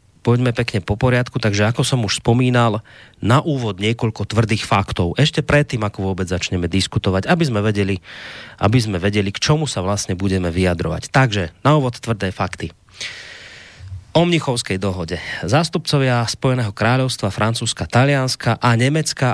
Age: 30-49